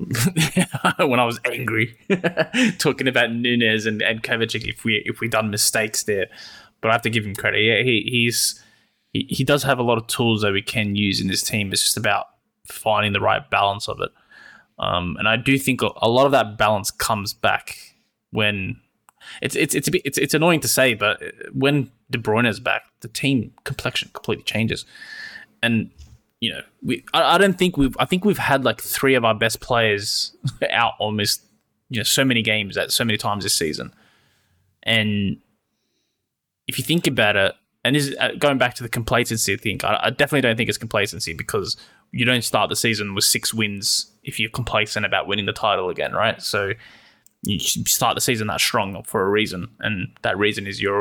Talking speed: 200 wpm